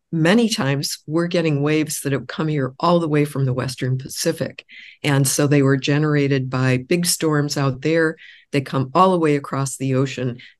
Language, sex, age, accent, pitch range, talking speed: English, female, 50-69, American, 135-155 Hz, 190 wpm